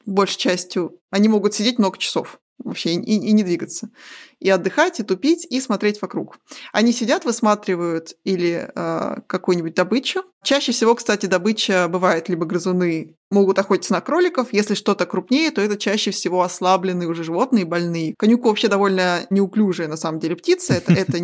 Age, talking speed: 20-39, 165 wpm